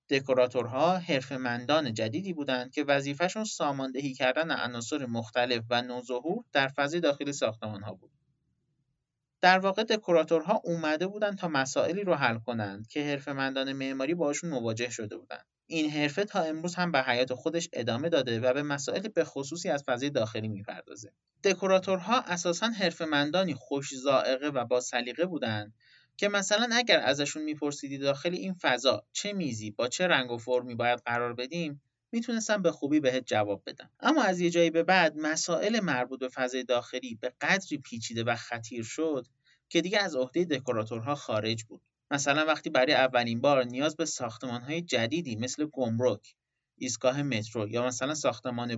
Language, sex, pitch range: Persian, male, 120-165 Hz